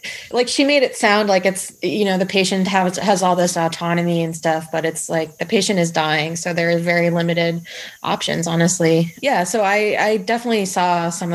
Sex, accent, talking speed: female, American, 205 wpm